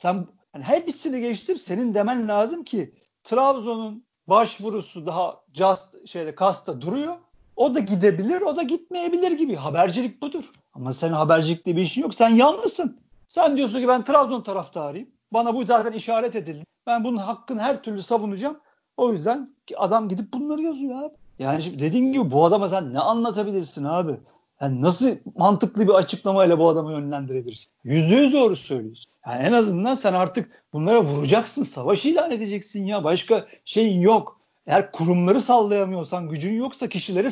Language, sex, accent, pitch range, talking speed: Turkish, male, native, 180-255 Hz, 160 wpm